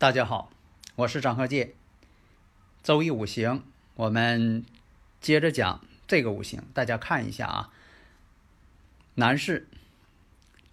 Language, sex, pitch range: Chinese, male, 105-160 Hz